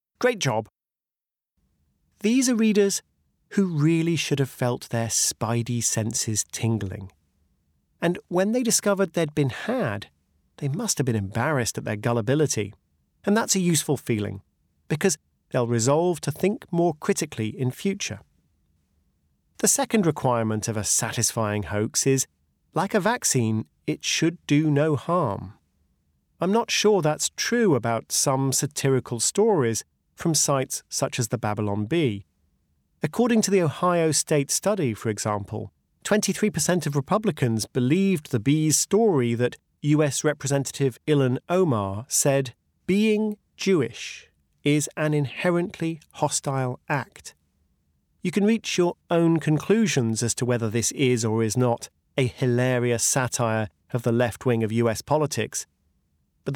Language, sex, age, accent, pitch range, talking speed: English, male, 40-59, British, 105-165 Hz, 135 wpm